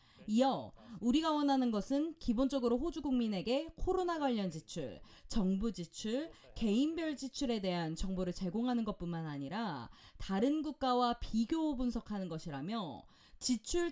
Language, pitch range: Korean, 185-275 Hz